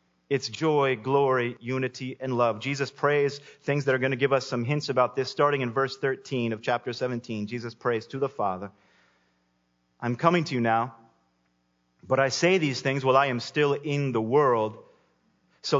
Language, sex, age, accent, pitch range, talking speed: English, male, 30-49, American, 115-155 Hz, 185 wpm